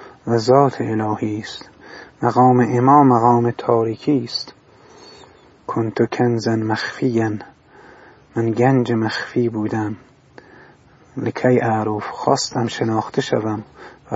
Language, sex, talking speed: Persian, male, 85 wpm